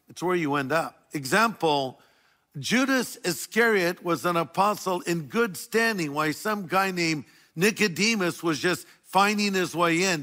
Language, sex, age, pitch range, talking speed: English, male, 50-69, 155-190 Hz, 145 wpm